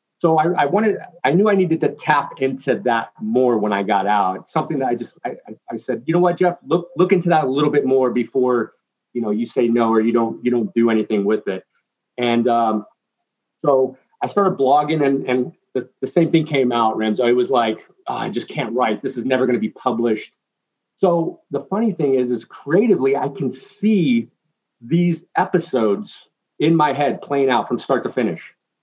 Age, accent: 40-59, American